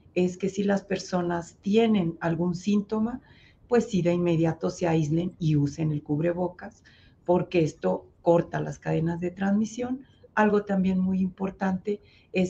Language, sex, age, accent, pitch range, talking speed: Spanish, female, 40-59, Mexican, 170-200 Hz, 145 wpm